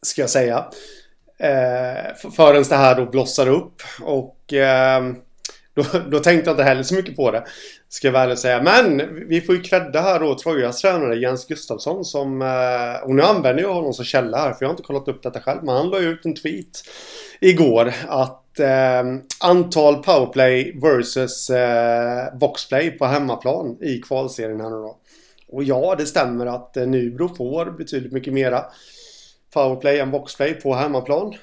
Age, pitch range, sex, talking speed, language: 30-49, 125-150 Hz, male, 175 wpm, Swedish